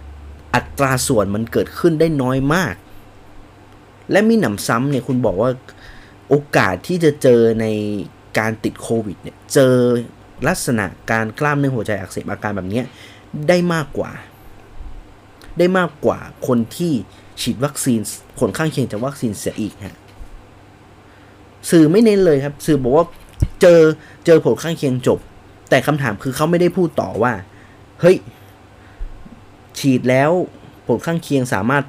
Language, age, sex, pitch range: Thai, 30-49, male, 100-145 Hz